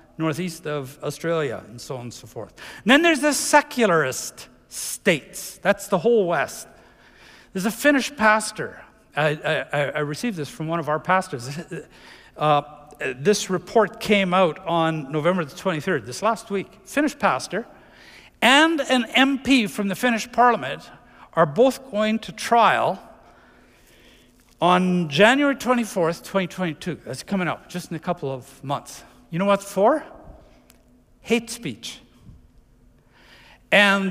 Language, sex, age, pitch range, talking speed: English, male, 50-69, 150-220 Hz, 135 wpm